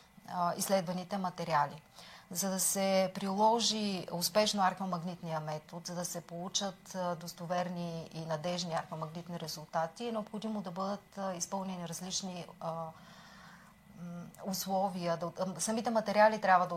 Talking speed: 105 wpm